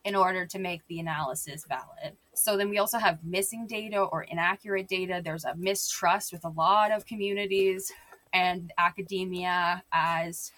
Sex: female